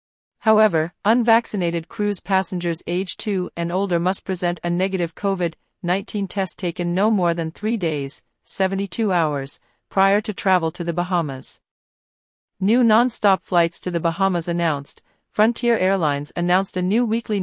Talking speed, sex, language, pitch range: 140 wpm, female, English, 170-200 Hz